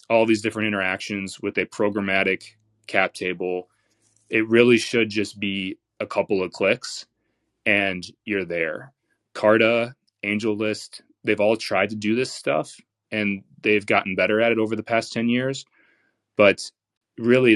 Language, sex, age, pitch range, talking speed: English, male, 20-39, 95-110 Hz, 145 wpm